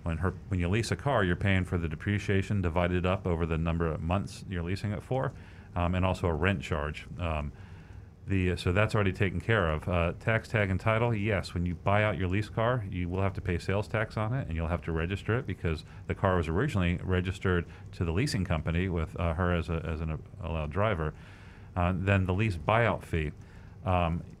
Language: English